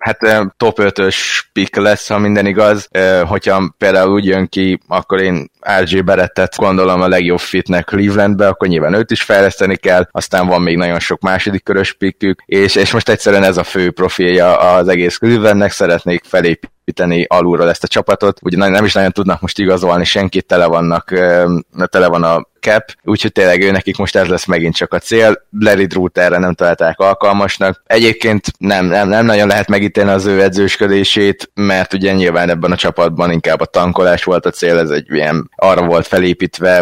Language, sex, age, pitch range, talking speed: Hungarian, male, 20-39, 90-100 Hz, 185 wpm